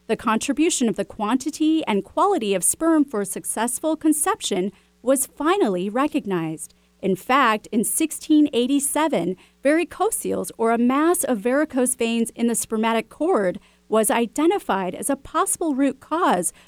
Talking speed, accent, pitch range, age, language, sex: 135 wpm, American, 205-295 Hz, 40-59, English, female